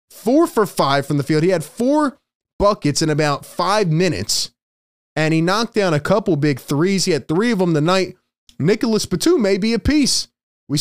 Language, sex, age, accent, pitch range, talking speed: English, male, 20-39, American, 135-185 Hz, 195 wpm